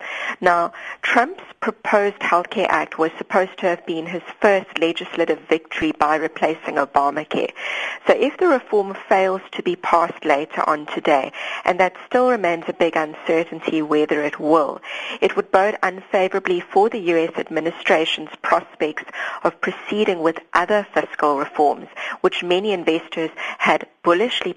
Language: English